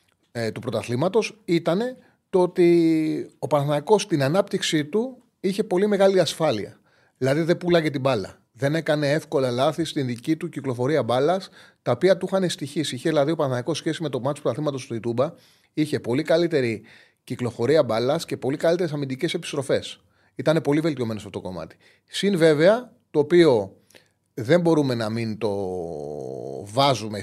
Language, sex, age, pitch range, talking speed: Greek, male, 30-49, 115-170 Hz, 155 wpm